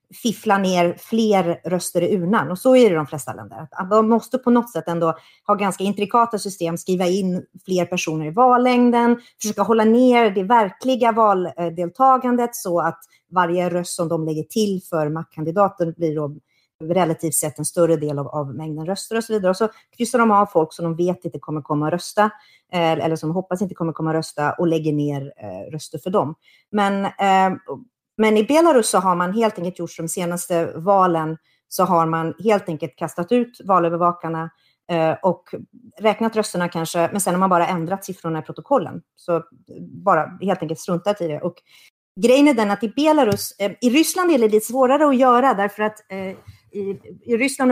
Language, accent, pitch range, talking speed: Swedish, native, 165-215 Hz, 190 wpm